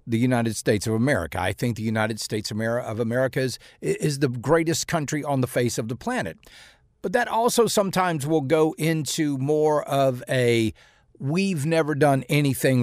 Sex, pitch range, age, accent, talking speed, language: male, 110-150 Hz, 50-69, American, 175 wpm, English